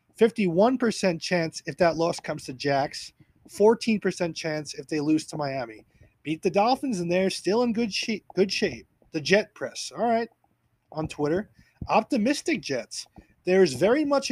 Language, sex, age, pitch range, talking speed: English, male, 30-49, 170-220 Hz, 155 wpm